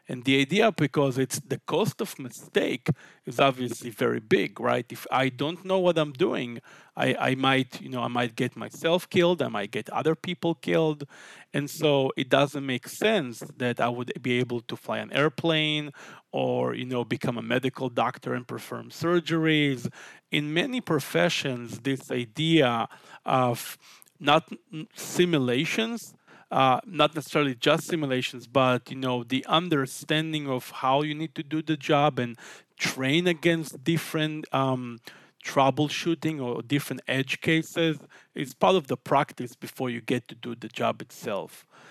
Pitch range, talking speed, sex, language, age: 125-160 Hz, 160 wpm, male, English, 40-59